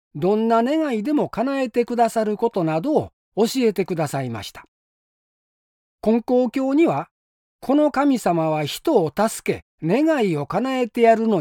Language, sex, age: Japanese, male, 40-59